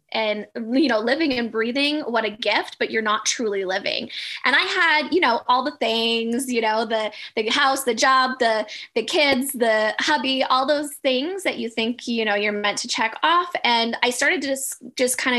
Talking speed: 210 wpm